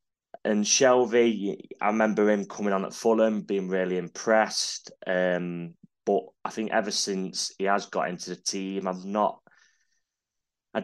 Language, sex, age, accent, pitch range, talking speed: English, male, 20-39, British, 95-105 Hz, 150 wpm